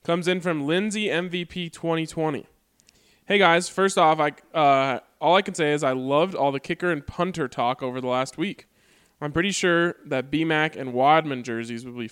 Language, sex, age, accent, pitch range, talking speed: English, male, 20-39, American, 130-175 Hz, 195 wpm